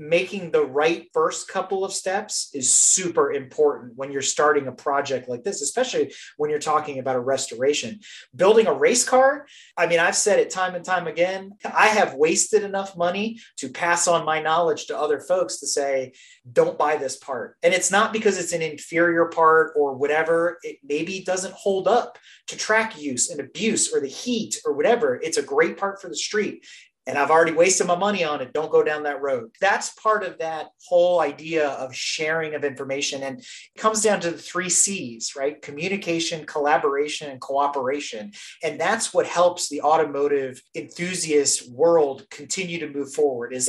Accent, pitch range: American, 145-215 Hz